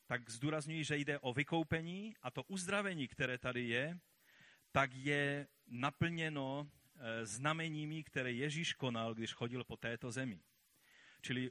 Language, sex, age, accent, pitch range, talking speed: Czech, male, 40-59, native, 115-145 Hz, 130 wpm